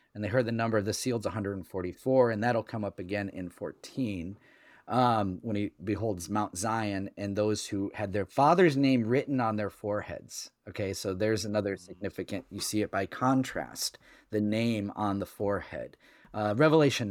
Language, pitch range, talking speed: English, 100-125 Hz, 185 wpm